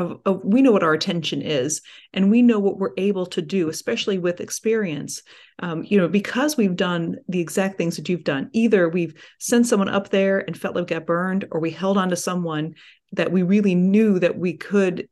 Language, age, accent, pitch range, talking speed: English, 40-59, American, 165-205 Hz, 210 wpm